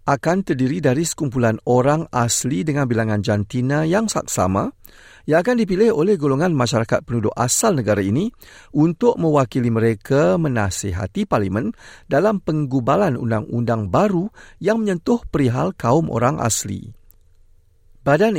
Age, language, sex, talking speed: 50-69, Malay, male, 120 wpm